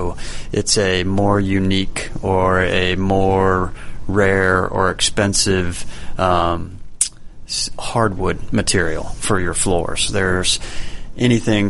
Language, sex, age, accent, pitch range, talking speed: English, male, 30-49, American, 90-105 Hz, 90 wpm